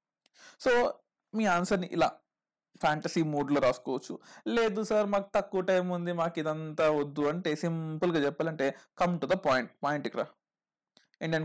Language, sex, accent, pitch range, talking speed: Telugu, male, native, 165-210 Hz, 135 wpm